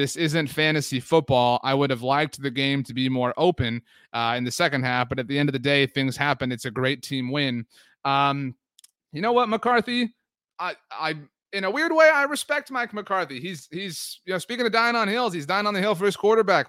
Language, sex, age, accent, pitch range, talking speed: English, male, 30-49, American, 130-175 Hz, 235 wpm